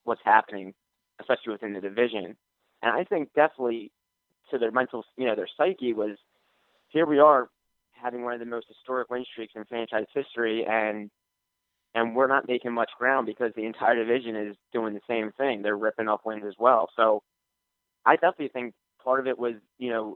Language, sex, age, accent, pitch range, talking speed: English, male, 20-39, American, 105-120 Hz, 190 wpm